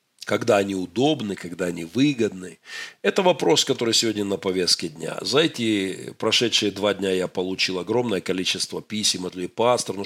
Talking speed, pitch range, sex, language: 155 wpm, 95-135 Hz, male, Russian